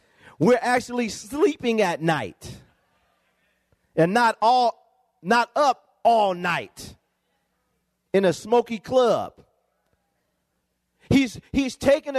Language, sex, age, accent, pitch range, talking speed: English, male, 40-59, American, 215-265 Hz, 95 wpm